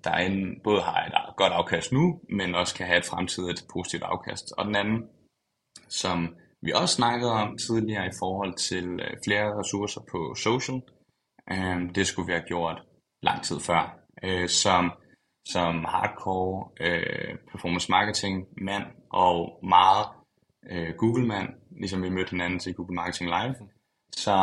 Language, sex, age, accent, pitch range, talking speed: Danish, male, 20-39, native, 90-105 Hz, 140 wpm